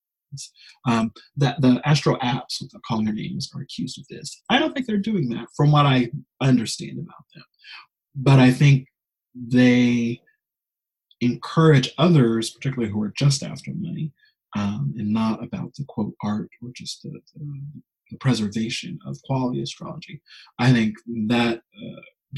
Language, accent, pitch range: English, American, 115-150 Hz